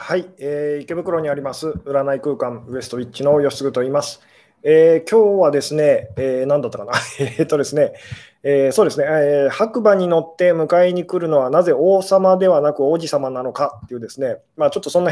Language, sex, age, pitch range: Japanese, male, 20-39, 145-185 Hz